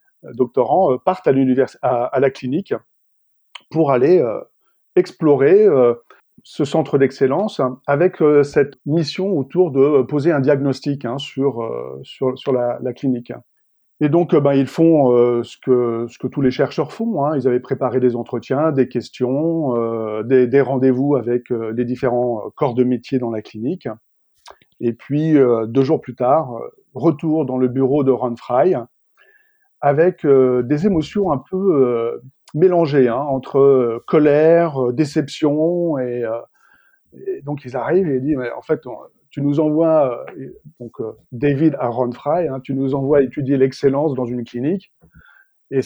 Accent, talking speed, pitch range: French, 165 wpm, 125-160 Hz